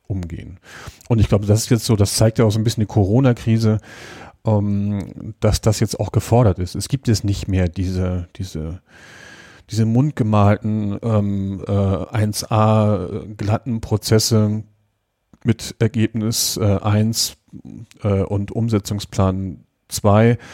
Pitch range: 95-110 Hz